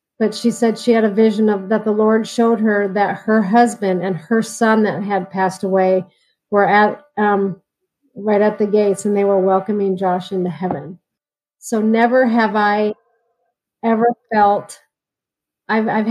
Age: 40-59